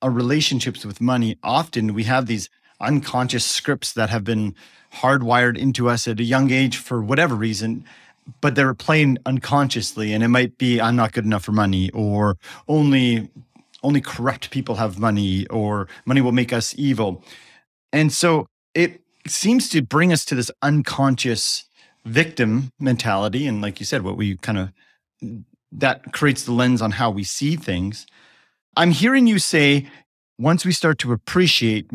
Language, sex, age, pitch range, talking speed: English, male, 40-59, 115-140 Hz, 165 wpm